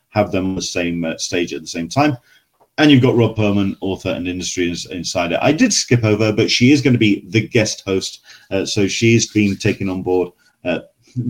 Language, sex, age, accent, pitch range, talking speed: English, male, 40-59, British, 95-125 Hz, 220 wpm